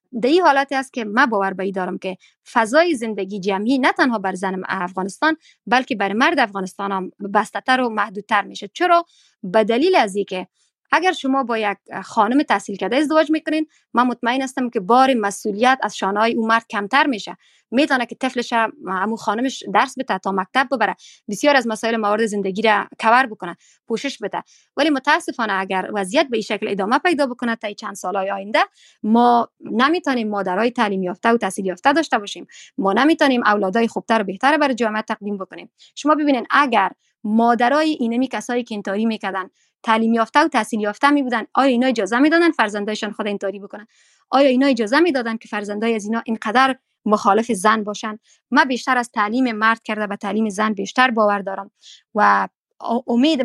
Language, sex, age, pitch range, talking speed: Persian, female, 20-39, 205-270 Hz, 175 wpm